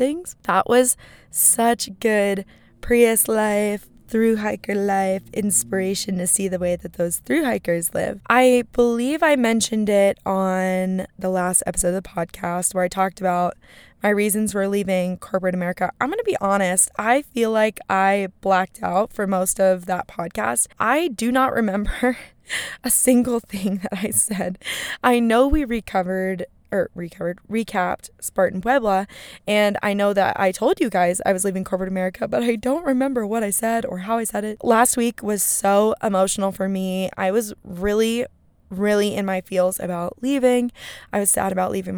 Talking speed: 175 wpm